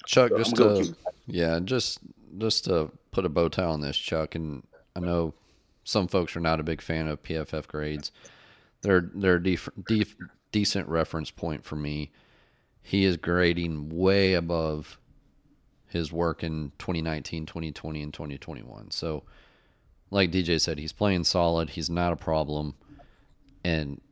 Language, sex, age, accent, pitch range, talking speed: English, male, 30-49, American, 75-85 Hz, 150 wpm